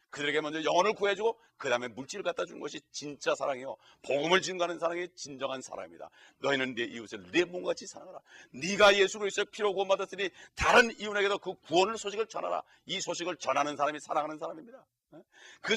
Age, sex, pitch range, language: 40-59, male, 135-200 Hz, Korean